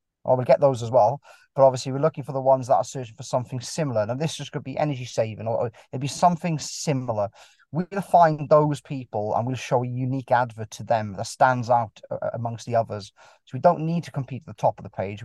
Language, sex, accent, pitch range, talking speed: English, male, British, 110-140 Hz, 240 wpm